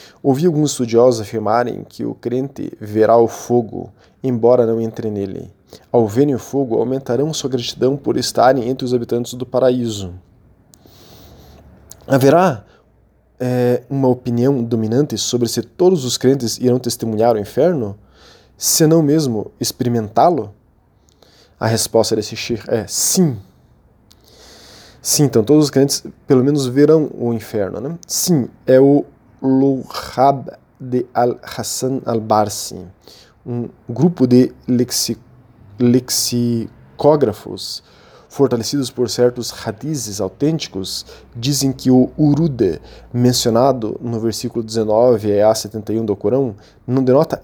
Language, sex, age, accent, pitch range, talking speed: Portuguese, male, 20-39, Brazilian, 110-130 Hz, 120 wpm